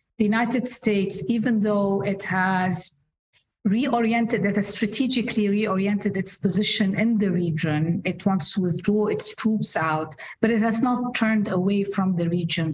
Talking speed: 155 wpm